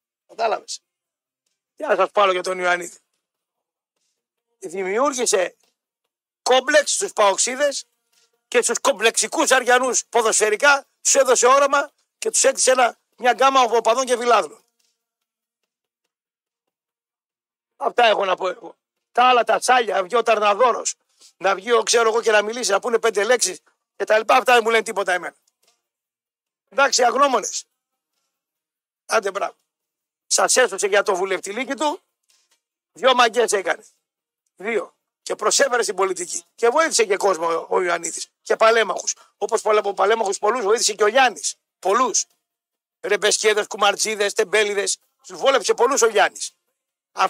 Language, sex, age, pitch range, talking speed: Greek, male, 60-79, 205-260 Hz, 130 wpm